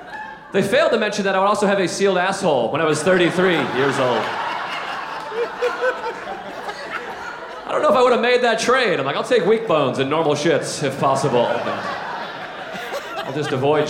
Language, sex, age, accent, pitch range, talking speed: English, male, 30-49, American, 105-170 Hz, 180 wpm